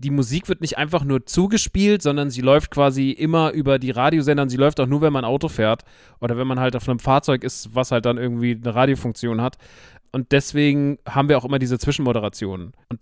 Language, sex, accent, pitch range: German, male, German, 125-150 Hz